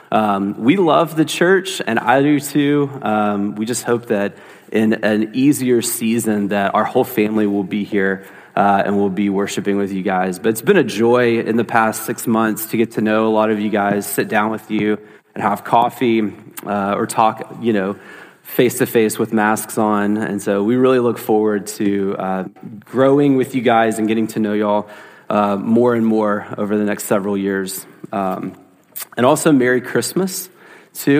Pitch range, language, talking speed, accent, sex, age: 105-120 Hz, English, 195 wpm, American, male, 30-49